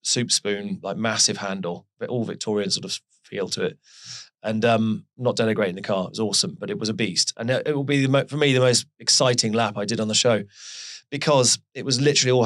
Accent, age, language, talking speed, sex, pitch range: British, 30-49, English, 240 wpm, male, 110-135 Hz